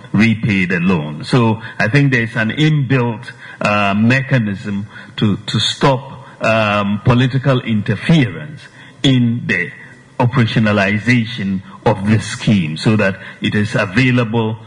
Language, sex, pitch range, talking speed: English, male, 115-140 Hz, 115 wpm